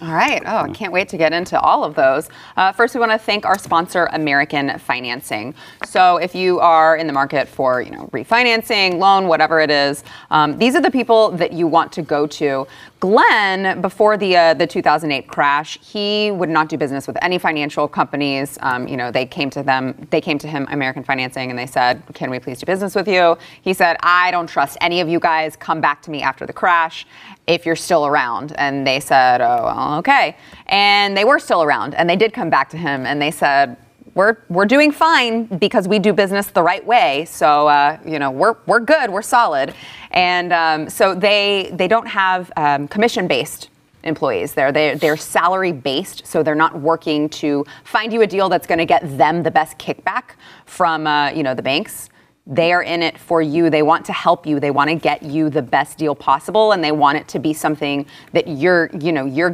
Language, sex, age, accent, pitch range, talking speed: English, female, 20-39, American, 145-195 Hz, 220 wpm